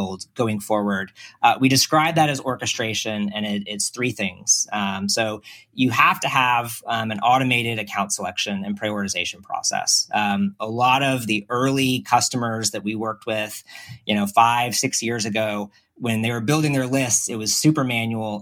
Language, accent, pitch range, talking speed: English, American, 105-130 Hz, 175 wpm